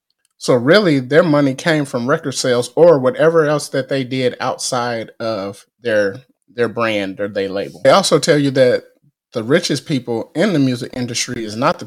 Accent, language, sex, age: American, English, male, 30-49